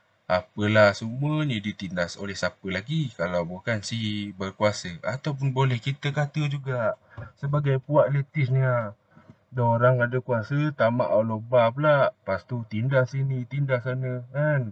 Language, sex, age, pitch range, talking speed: Malay, male, 20-39, 105-135 Hz, 135 wpm